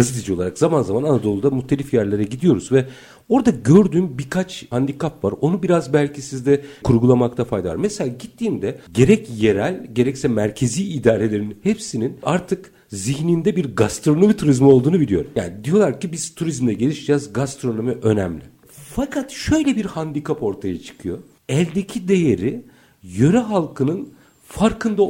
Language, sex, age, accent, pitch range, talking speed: Turkish, male, 50-69, native, 120-190 Hz, 130 wpm